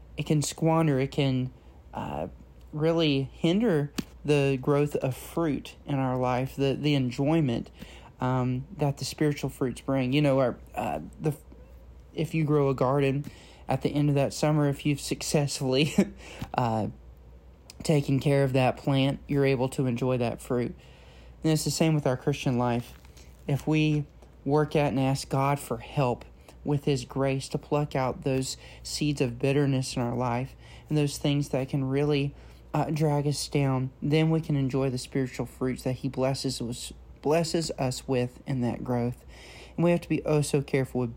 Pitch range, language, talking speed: 120-145 Hz, English, 175 wpm